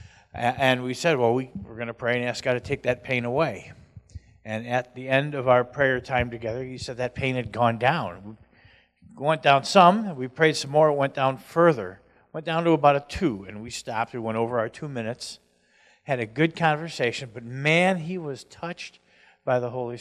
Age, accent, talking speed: 50-69, American, 210 wpm